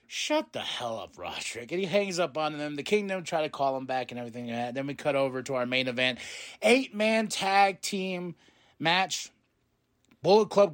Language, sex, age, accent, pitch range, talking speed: English, male, 30-49, American, 145-210 Hz, 190 wpm